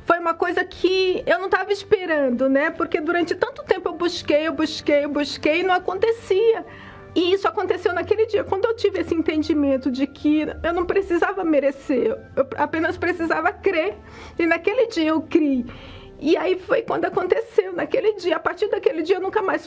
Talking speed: 185 wpm